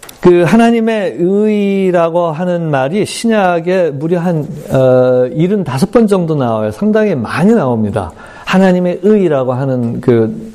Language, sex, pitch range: Korean, male, 130-180 Hz